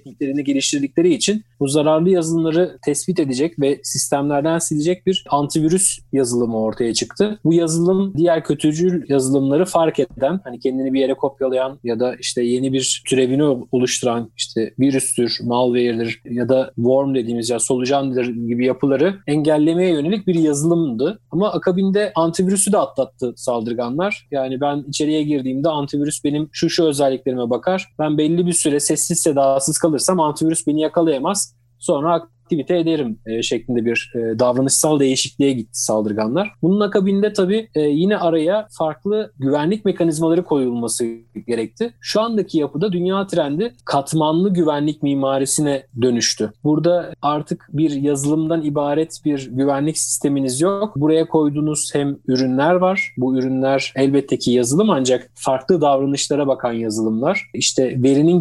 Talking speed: 135 wpm